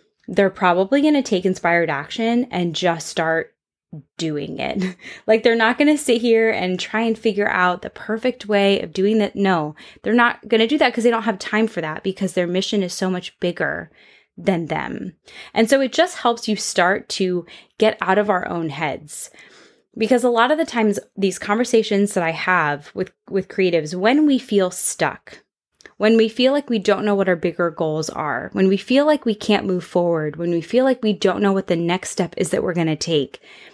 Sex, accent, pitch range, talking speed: female, American, 180-225 Hz, 215 wpm